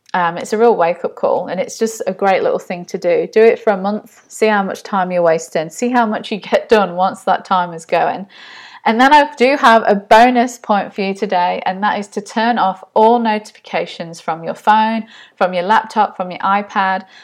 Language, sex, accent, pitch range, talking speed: English, female, British, 185-220 Hz, 225 wpm